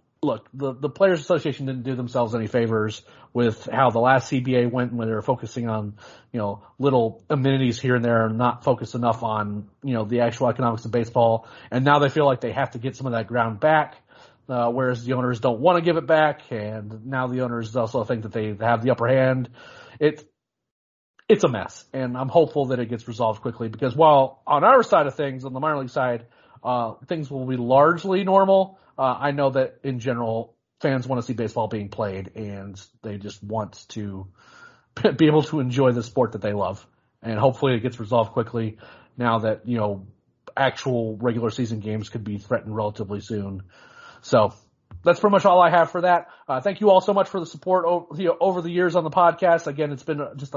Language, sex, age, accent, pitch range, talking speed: English, male, 40-59, American, 115-150 Hz, 215 wpm